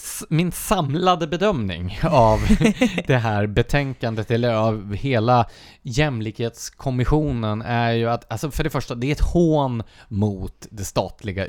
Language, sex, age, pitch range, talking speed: English, male, 30-49, 100-125 Hz, 125 wpm